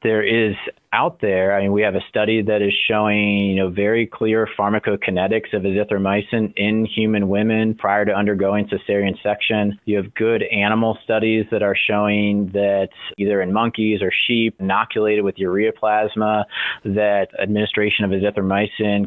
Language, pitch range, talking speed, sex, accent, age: English, 100-110 Hz, 155 wpm, male, American, 30-49